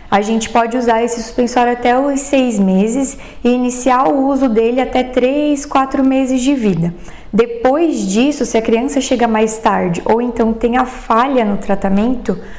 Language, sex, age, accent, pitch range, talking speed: Portuguese, female, 20-39, Brazilian, 215-250 Hz, 170 wpm